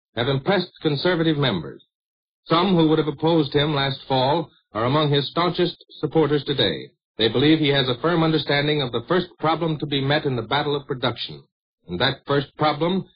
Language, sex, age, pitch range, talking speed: English, male, 60-79, 130-160 Hz, 185 wpm